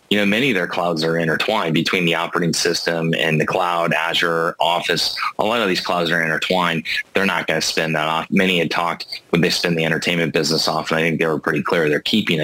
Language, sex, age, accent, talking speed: English, male, 30-49, American, 235 wpm